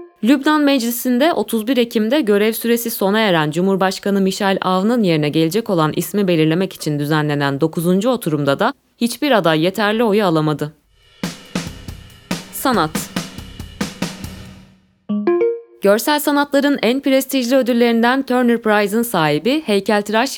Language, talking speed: Turkish, 105 wpm